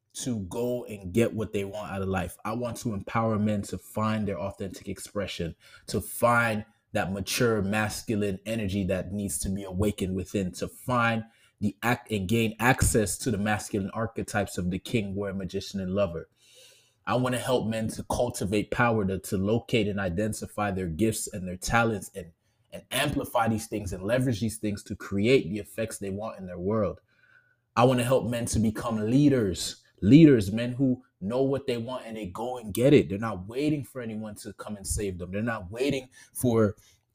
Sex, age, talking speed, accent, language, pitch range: male, 20-39, 190 wpm, American, English, 100-125 Hz